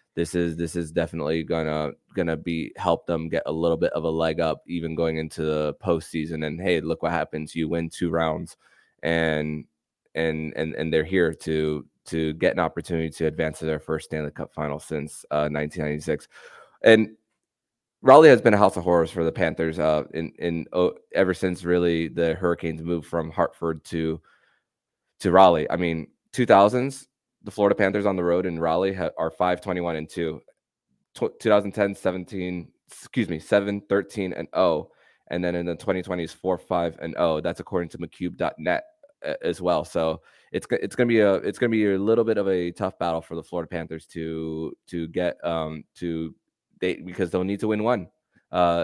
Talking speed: 190 wpm